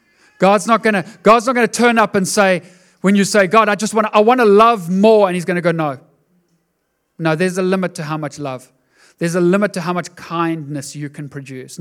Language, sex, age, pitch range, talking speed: English, male, 40-59, 150-210 Hz, 210 wpm